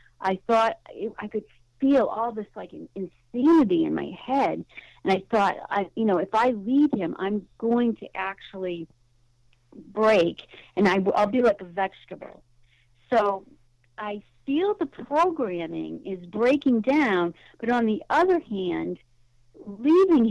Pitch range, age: 190-260 Hz, 50-69